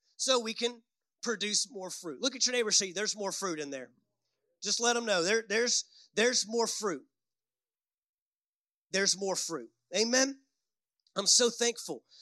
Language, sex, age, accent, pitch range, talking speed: English, male, 30-49, American, 195-255 Hz, 155 wpm